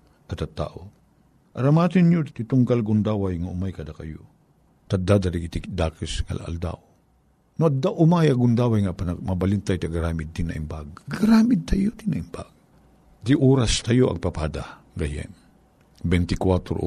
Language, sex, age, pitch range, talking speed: Filipino, male, 50-69, 85-140 Hz, 140 wpm